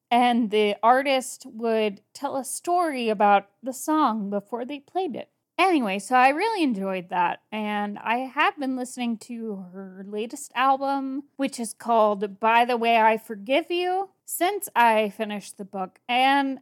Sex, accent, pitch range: female, American, 210-275 Hz